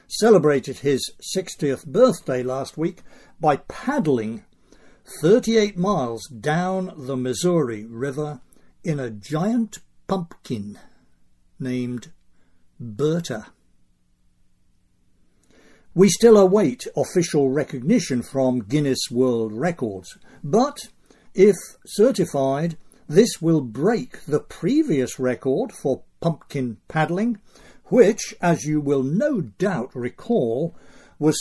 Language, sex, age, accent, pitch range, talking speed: English, male, 60-79, British, 130-195 Hz, 95 wpm